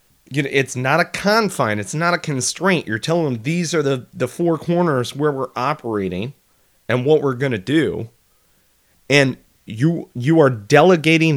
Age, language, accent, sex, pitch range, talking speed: 30-49, English, American, male, 120-155 Hz, 175 wpm